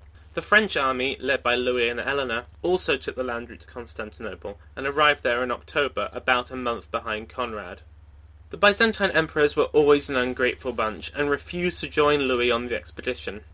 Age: 30-49